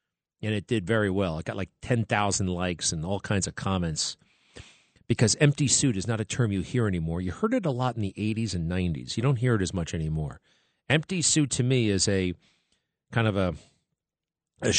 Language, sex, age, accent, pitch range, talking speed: English, male, 40-59, American, 100-130 Hz, 210 wpm